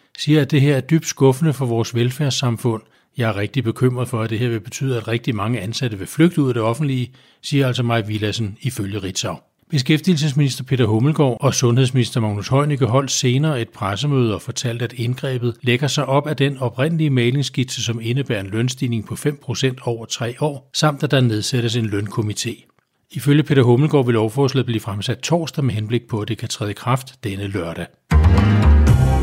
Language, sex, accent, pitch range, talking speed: Danish, male, native, 115-140 Hz, 190 wpm